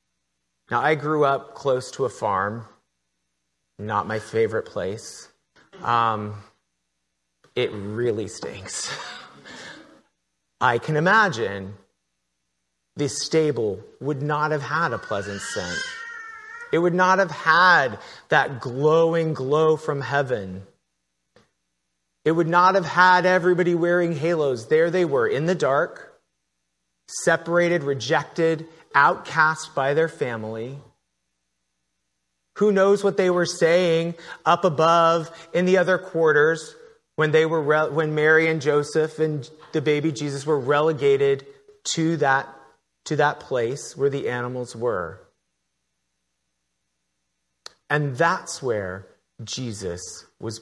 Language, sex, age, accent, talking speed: English, male, 30-49, American, 115 wpm